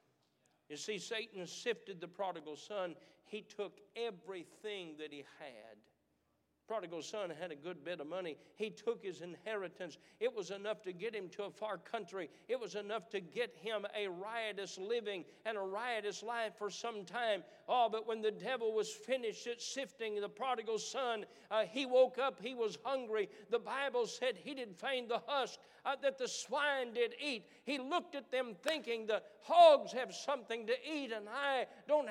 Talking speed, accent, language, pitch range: 185 wpm, American, English, 195-280 Hz